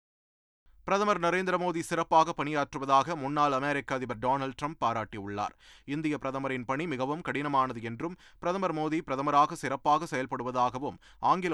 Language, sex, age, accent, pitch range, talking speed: Tamil, male, 30-49, native, 130-160 Hz, 120 wpm